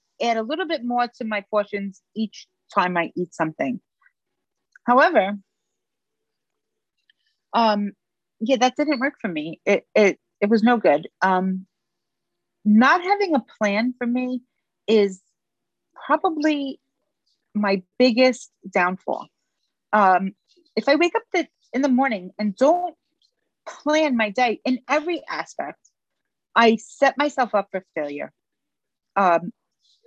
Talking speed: 125 wpm